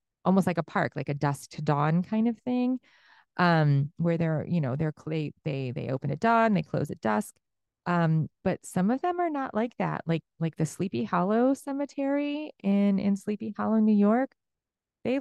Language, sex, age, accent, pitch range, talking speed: English, female, 30-49, American, 155-190 Hz, 195 wpm